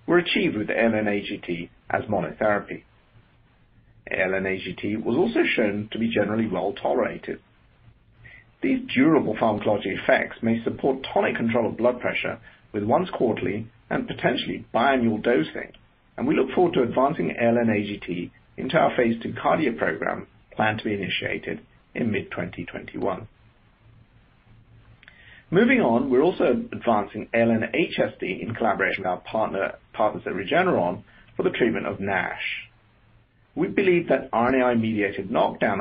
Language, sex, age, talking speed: English, male, 50-69, 125 wpm